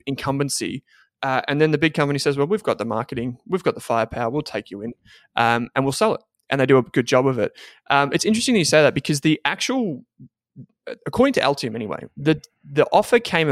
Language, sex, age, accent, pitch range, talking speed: English, male, 20-39, Australian, 120-150 Hz, 230 wpm